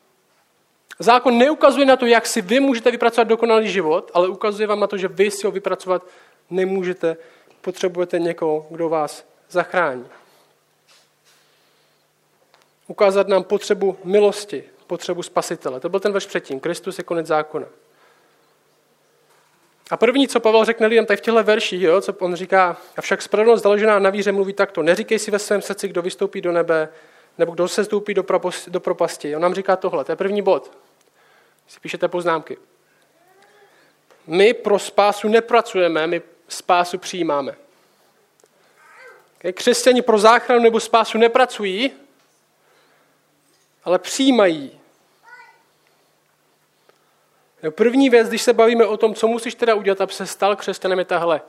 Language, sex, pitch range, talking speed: Czech, male, 180-230 Hz, 140 wpm